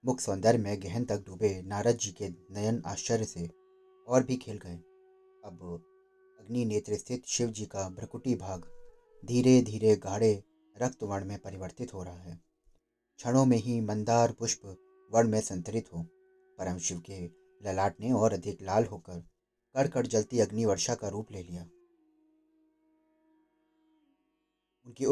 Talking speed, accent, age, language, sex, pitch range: 145 wpm, native, 30-49, Hindi, male, 100-145 Hz